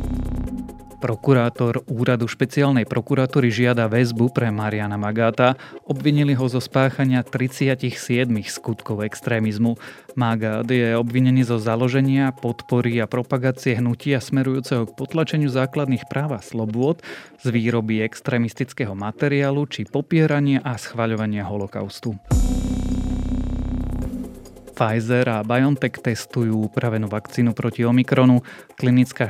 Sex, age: male, 30-49